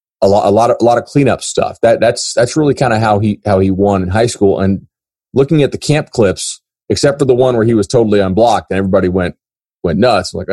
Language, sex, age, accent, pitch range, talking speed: English, male, 30-49, American, 95-130 Hz, 255 wpm